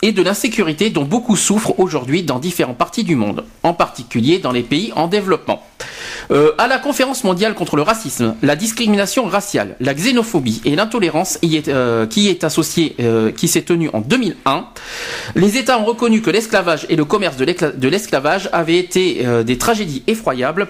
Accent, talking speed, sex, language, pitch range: French, 165 wpm, male, French, 150-220 Hz